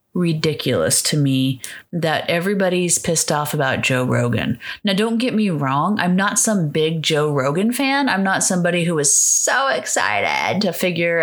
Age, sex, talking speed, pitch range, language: 30-49, female, 165 wpm, 155-200 Hz, English